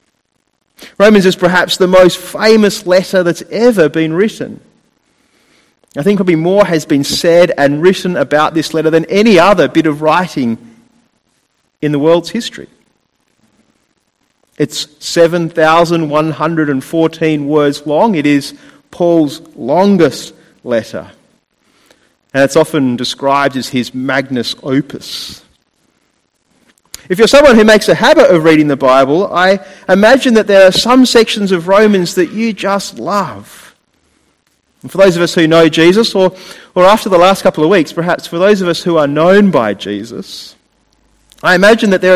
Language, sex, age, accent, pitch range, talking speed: English, male, 30-49, Australian, 155-200 Hz, 145 wpm